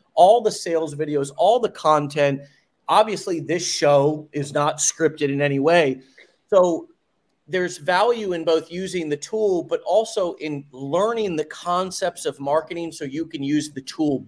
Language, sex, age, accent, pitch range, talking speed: English, male, 40-59, American, 145-185 Hz, 160 wpm